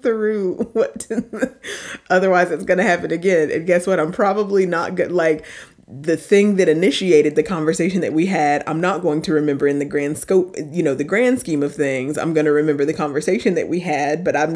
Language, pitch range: English, 150-200 Hz